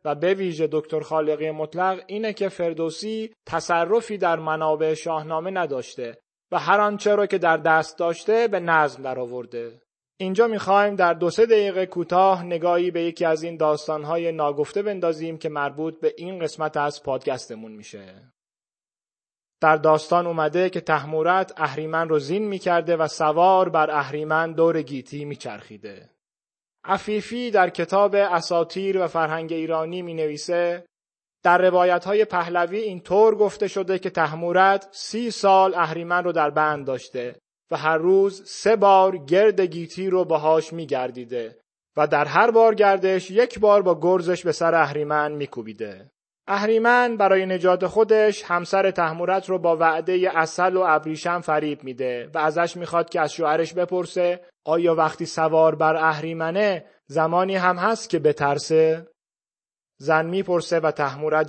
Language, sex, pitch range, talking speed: Persian, male, 155-185 Hz, 145 wpm